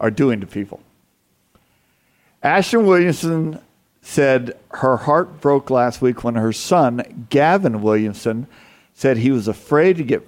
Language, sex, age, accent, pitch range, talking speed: English, male, 50-69, American, 110-145 Hz, 135 wpm